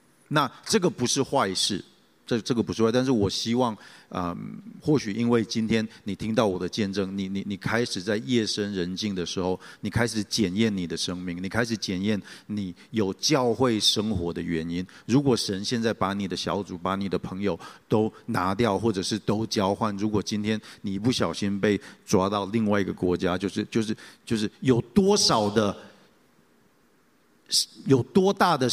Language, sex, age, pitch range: Chinese, male, 50-69, 95-120 Hz